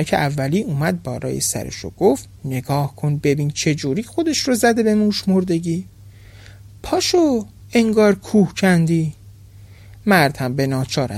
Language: Persian